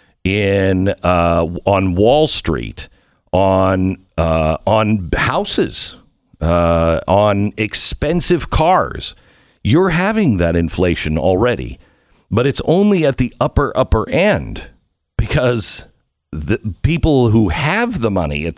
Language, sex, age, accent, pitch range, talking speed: English, male, 50-69, American, 90-125 Hz, 110 wpm